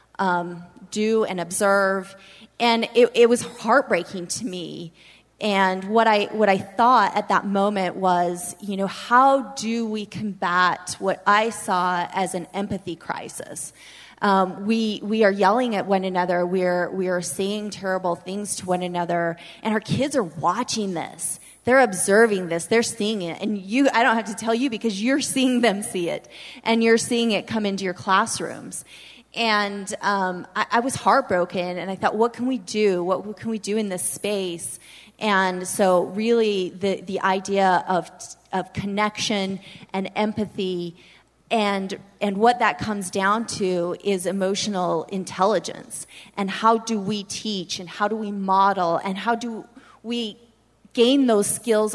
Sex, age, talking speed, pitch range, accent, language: female, 20-39, 165 wpm, 185-220 Hz, American, English